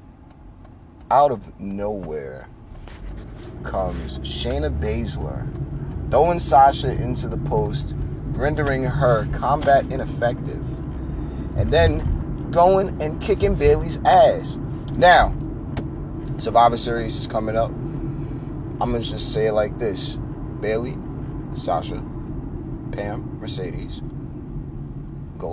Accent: American